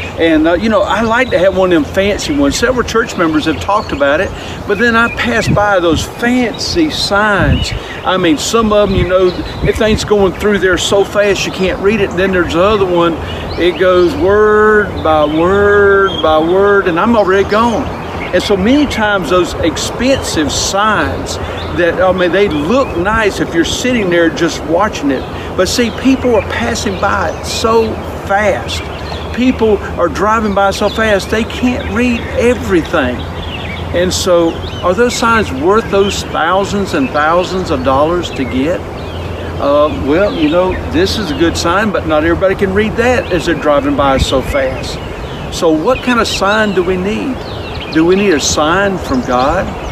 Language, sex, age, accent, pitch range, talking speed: English, male, 50-69, American, 170-225 Hz, 180 wpm